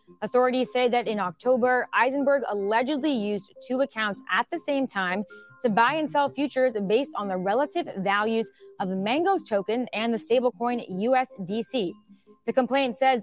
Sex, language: female, English